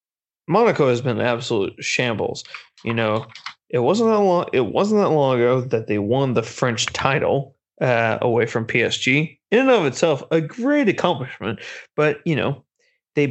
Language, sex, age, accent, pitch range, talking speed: English, male, 30-49, American, 125-165 Hz, 170 wpm